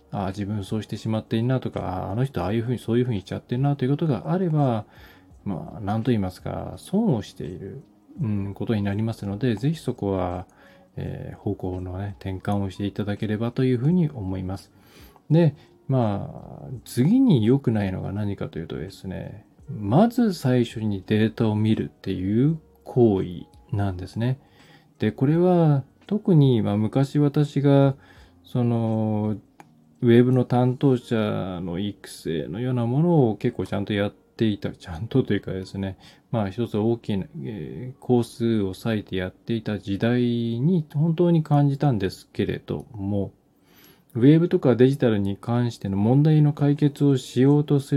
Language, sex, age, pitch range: Japanese, male, 20-39, 100-140 Hz